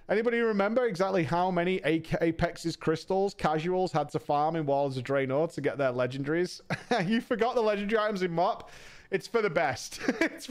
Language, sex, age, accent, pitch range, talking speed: English, male, 30-49, British, 150-225 Hz, 175 wpm